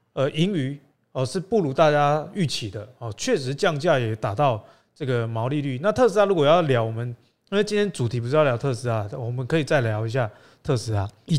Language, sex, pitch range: Chinese, male, 125-185 Hz